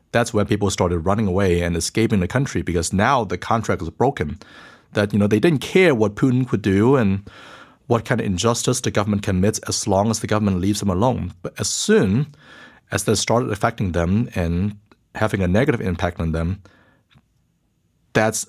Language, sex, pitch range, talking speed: English, male, 95-120 Hz, 190 wpm